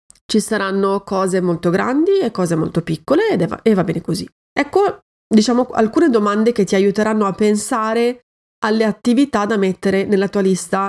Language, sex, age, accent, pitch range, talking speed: Italian, female, 30-49, native, 180-220 Hz, 170 wpm